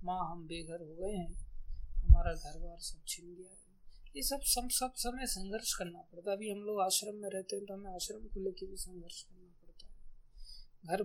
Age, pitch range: 20-39, 175-200 Hz